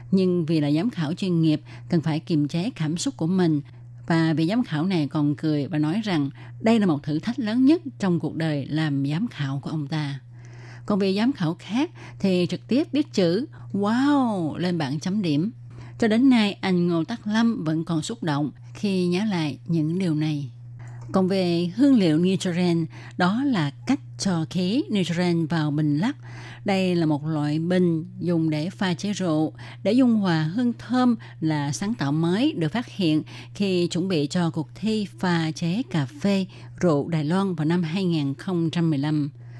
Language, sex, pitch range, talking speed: Vietnamese, female, 145-185 Hz, 190 wpm